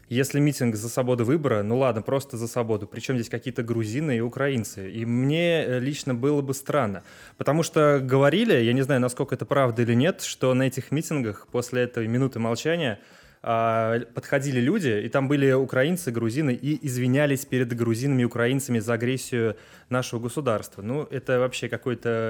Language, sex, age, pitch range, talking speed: Russian, male, 20-39, 115-140 Hz, 165 wpm